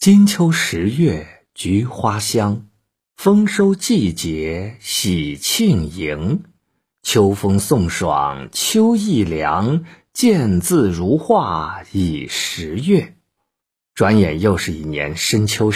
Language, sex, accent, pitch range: Chinese, male, native, 95-150 Hz